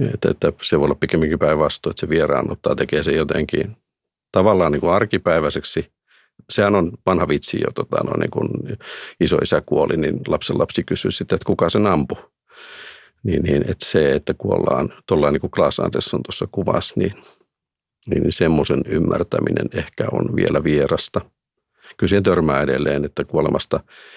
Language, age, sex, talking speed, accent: Finnish, 50-69, male, 155 wpm, native